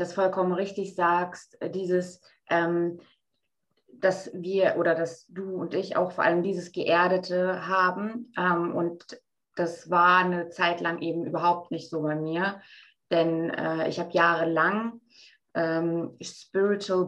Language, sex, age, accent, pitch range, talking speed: German, female, 20-39, German, 165-180 Hz, 135 wpm